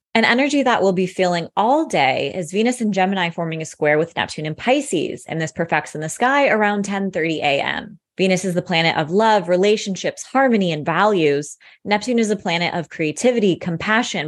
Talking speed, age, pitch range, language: 190 wpm, 20-39, 165-220 Hz, English